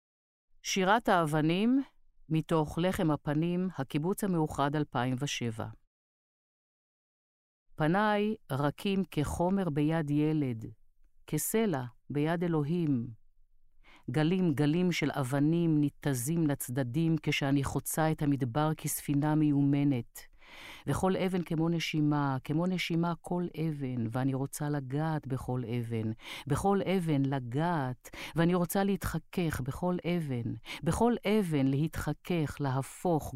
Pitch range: 135-170 Hz